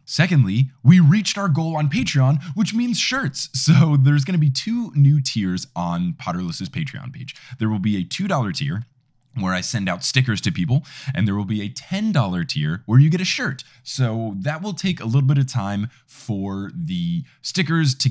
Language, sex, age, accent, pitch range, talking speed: English, male, 20-39, American, 110-155 Hz, 200 wpm